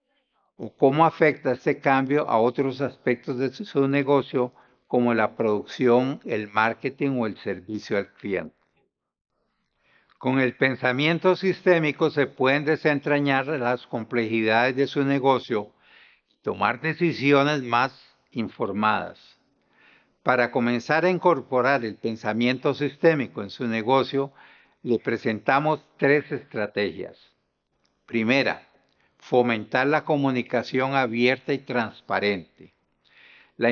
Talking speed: 105 wpm